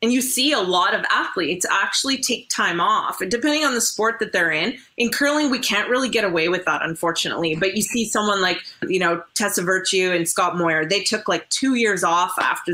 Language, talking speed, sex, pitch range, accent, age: English, 225 wpm, female, 185-240 Hz, American, 30-49